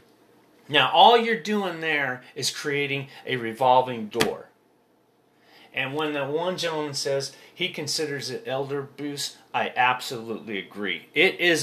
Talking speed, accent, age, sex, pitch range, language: 135 wpm, American, 30-49, male, 130-160 Hz, English